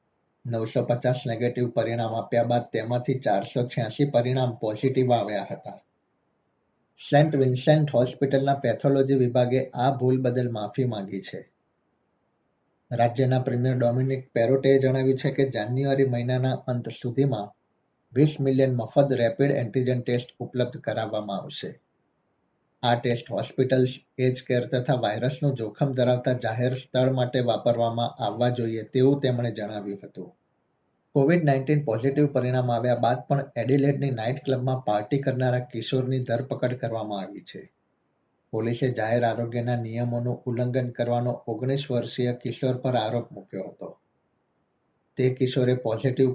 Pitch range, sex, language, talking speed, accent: 120-130 Hz, male, Gujarati, 40 wpm, native